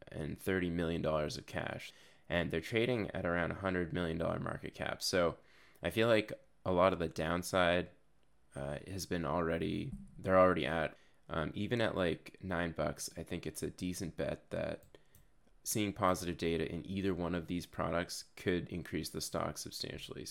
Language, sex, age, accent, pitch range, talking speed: English, male, 20-39, American, 85-100 Hz, 175 wpm